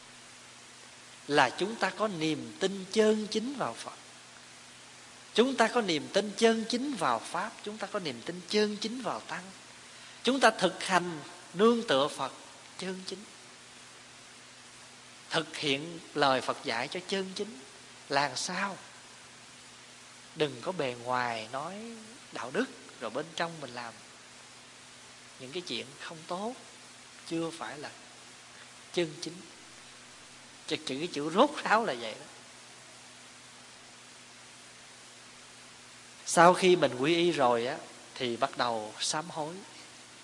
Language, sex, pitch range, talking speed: Vietnamese, male, 140-200 Hz, 135 wpm